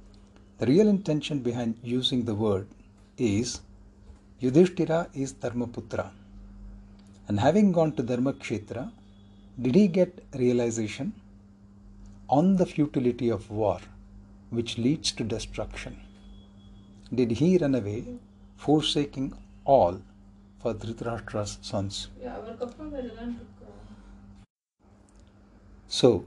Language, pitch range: English, 100-125 Hz